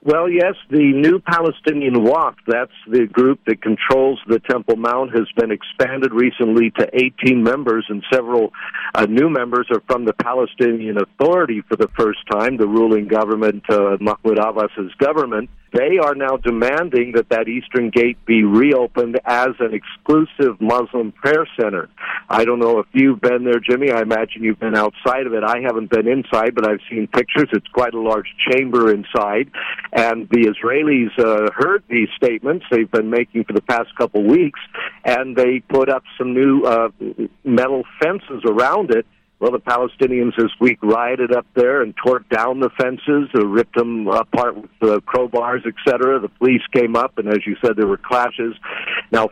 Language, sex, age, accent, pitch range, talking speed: English, male, 50-69, American, 110-125 Hz, 175 wpm